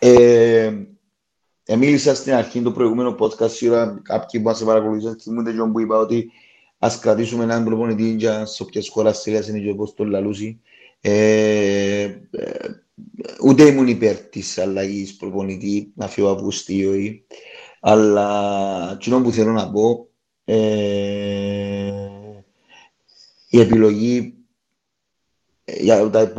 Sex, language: male, Greek